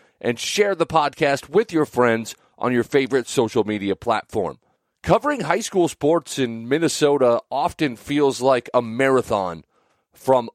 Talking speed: 140 wpm